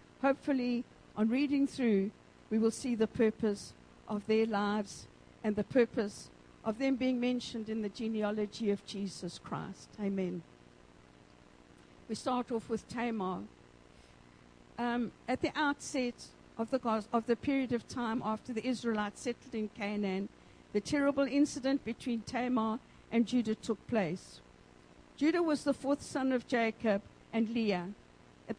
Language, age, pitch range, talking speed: English, 50-69, 205-250 Hz, 140 wpm